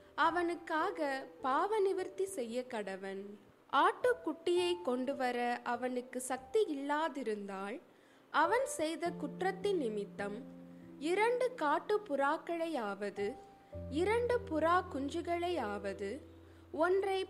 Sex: female